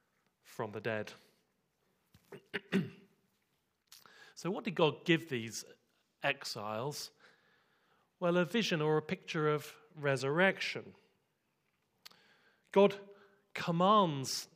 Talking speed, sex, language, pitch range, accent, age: 80 wpm, male, English, 150-200 Hz, British, 40-59